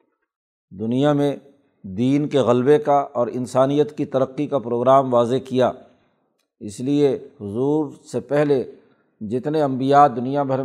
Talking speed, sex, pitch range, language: 130 wpm, male, 125-145 Hz, Urdu